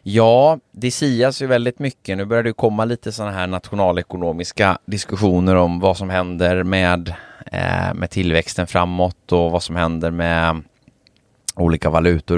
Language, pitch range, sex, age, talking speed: Swedish, 80-100 Hz, male, 20-39, 150 wpm